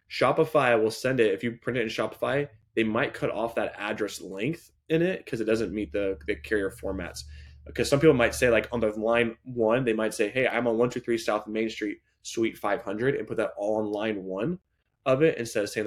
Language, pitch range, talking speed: English, 100-115 Hz, 230 wpm